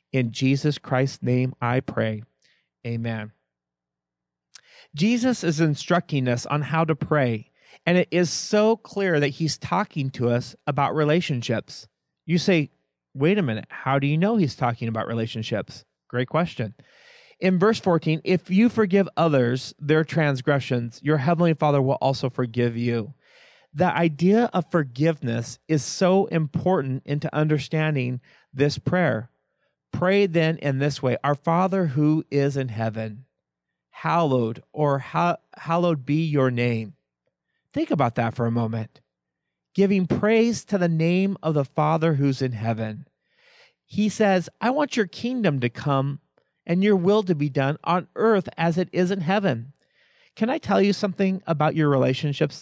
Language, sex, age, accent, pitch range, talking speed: English, male, 40-59, American, 130-175 Hz, 150 wpm